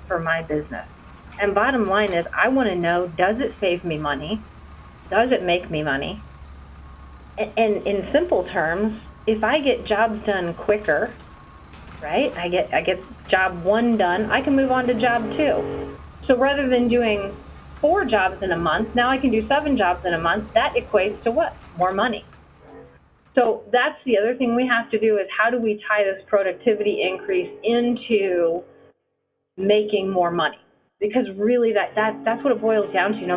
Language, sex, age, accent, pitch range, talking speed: English, female, 30-49, American, 185-245 Hz, 185 wpm